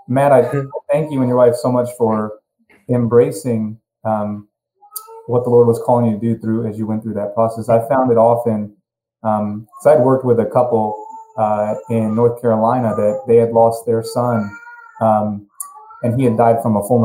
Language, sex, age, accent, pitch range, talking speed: English, male, 30-49, American, 110-130 Hz, 195 wpm